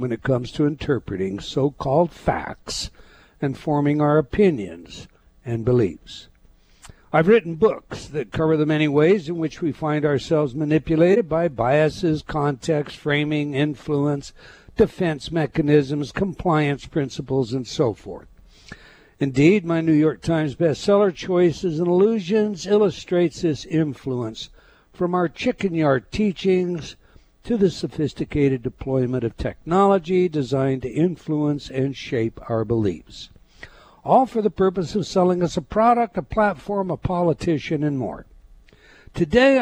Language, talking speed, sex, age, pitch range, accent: English, 130 wpm, male, 60-79, 135-180 Hz, American